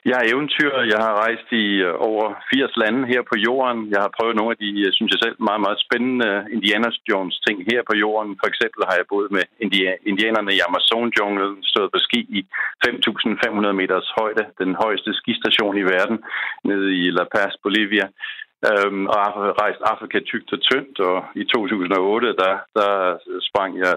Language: Danish